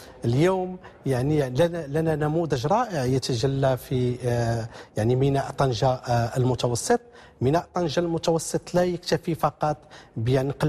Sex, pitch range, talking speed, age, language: male, 135-170 Hz, 105 wpm, 40-59, English